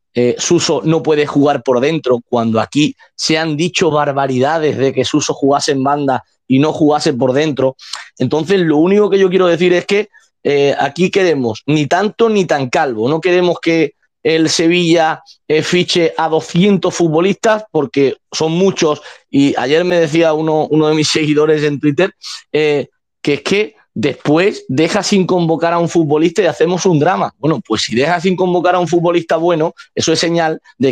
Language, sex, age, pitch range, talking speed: Spanish, male, 30-49, 140-175 Hz, 180 wpm